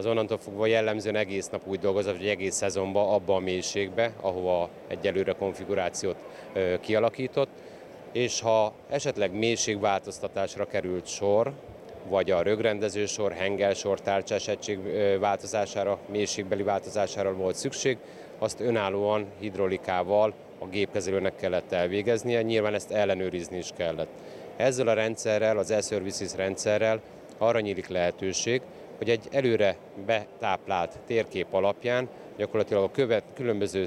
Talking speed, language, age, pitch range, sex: 120 wpm, Hungarian, 30-49, 95-110 Hz, male